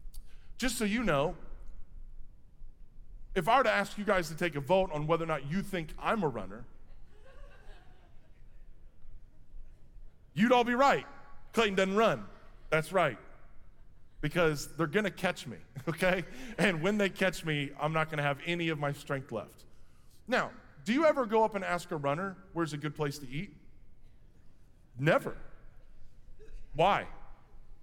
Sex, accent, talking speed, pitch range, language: male, American, 155 wpm, 150-220 Hz, English